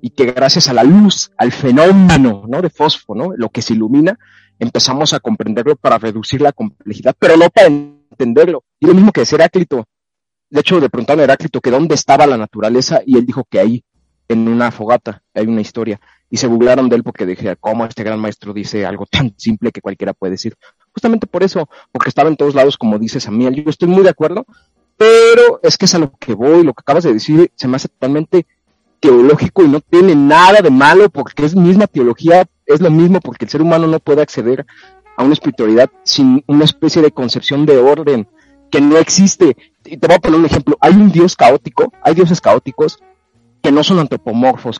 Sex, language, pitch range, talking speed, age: male, Spanish, 120-185 Hz, 215 wpm, 40-59